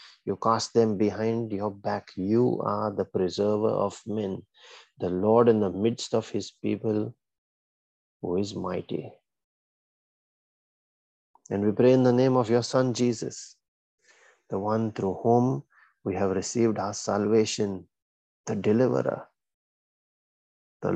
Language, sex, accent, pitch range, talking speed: English, male, Indian, 100-115 Hz, 130 wpm